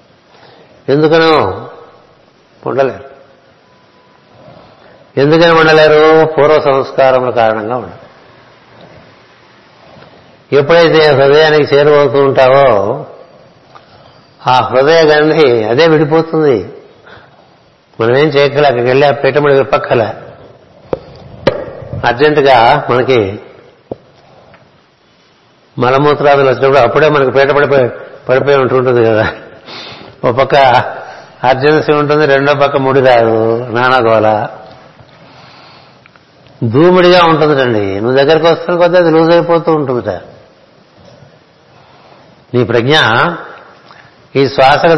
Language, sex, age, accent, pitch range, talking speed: Telugu, male, 60-79, native, 130-155 Hz, 80 wpm